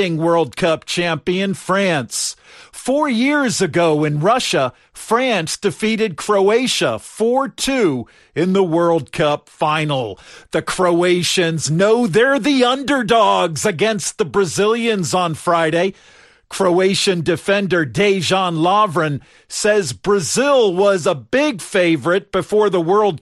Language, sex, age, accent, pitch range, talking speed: English, male, 50-69, American, 165-220 Hz, 110 wpm